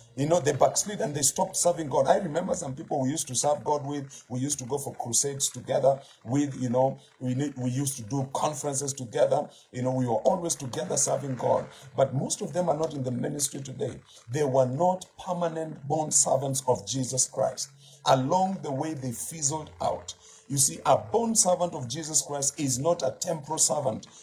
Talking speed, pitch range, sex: 205 wpm, 130-160 Hz, male